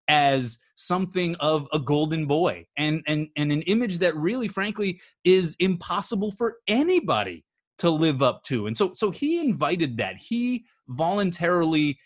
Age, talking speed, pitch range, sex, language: 20-39, 150 wpm, 135-175 Hz, male, English